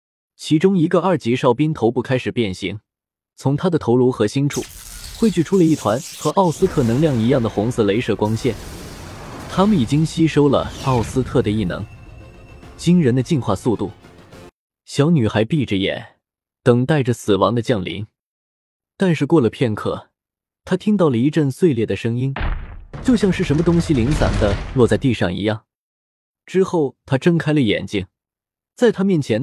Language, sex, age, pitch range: Chinese, male, 20-39, 105-155 Hz